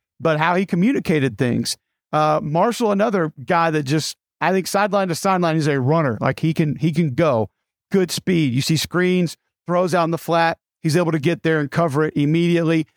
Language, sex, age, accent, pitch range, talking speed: English, male, 50-69, American, 155-185 Hz, 205 wpm